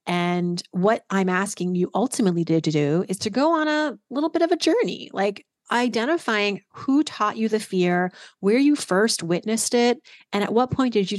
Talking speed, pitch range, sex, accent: 195 wpm, 175-230 Hz, female, American